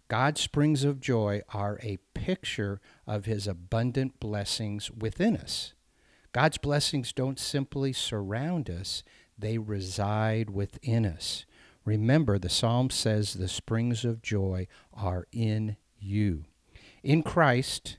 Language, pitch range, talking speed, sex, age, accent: English, 100-130 Hz, 120 wpm, male, 50-69, American